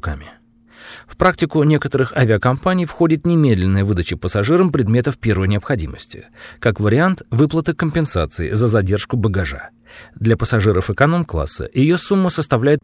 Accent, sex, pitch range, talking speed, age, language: native, male, 100-160 Hz, 110 wpm, 40-59, Russian